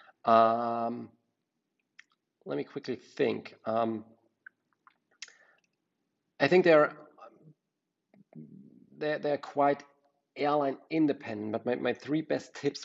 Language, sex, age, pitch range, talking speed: English, male, 40-59, 115-150 Hz, 95 wpm